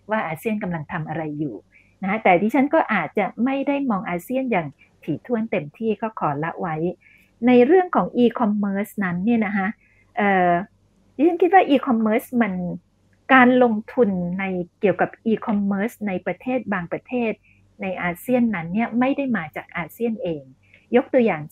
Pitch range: 180-250 Hz